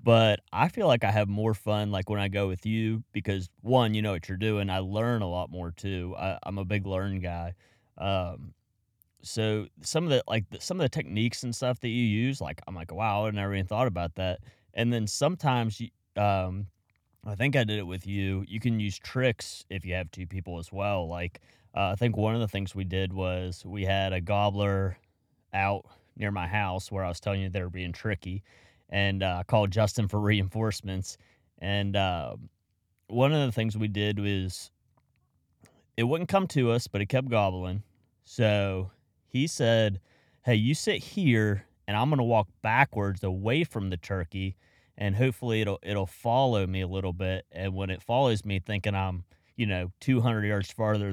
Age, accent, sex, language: 30-49, American, male, English